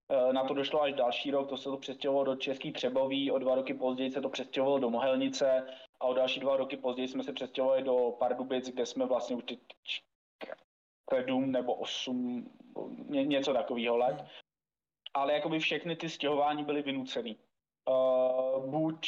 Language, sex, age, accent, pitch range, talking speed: Czech, male, 20-39, native, 130-150 Hz, 175 wpm